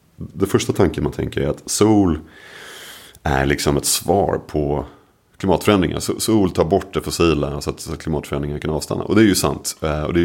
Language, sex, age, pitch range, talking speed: Swedish, male, 30-49, 75-100 Hz, 180 wpm